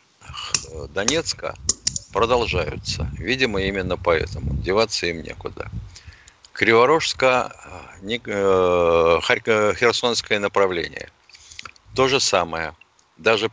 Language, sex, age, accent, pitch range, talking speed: Russian, male, 50-69, native, 95-130 Hz, 65 wpm